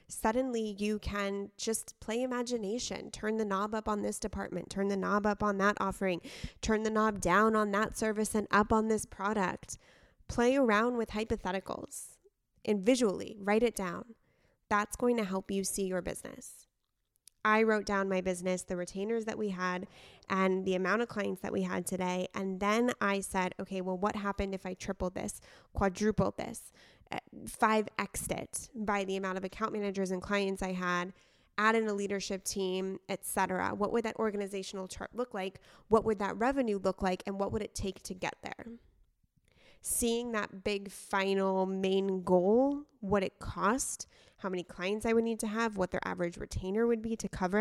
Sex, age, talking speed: female, 20-39, 185 wpm